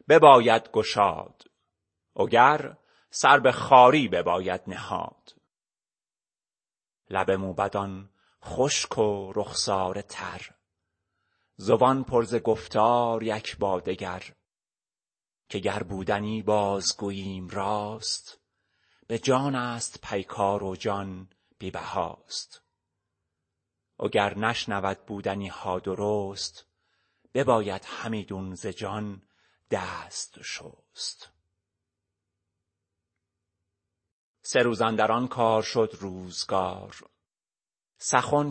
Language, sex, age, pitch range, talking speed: Persian, male, 30-49, 95-120 Hz, 75 wpm